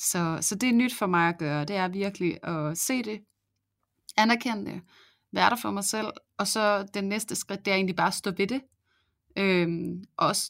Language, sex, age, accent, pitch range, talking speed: Danish, female, 30-49, native, 175-205 Hz, 215 wpm